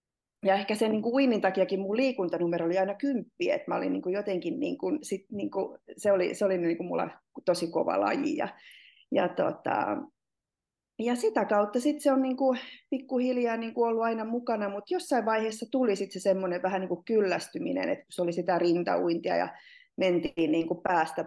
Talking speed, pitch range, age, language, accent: 165 wpm, 175-240 Hz, 30-49, Finnish, native